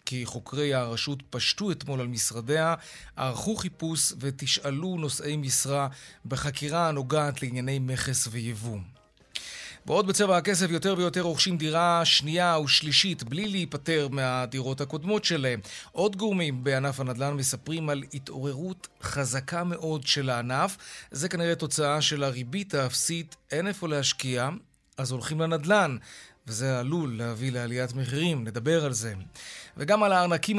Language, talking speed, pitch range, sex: Hebrew, 130 wpm, 130-170 Hz, male